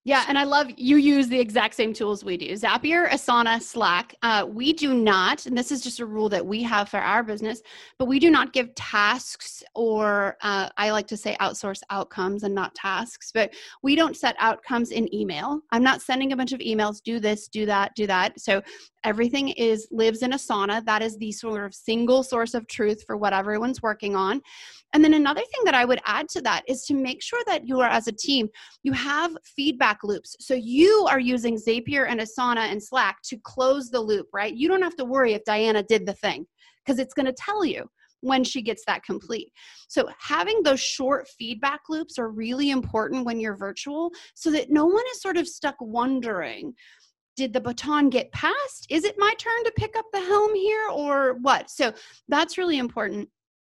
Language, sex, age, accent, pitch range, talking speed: English, female, 30-49, American, 215-285 Hz, 210 wpm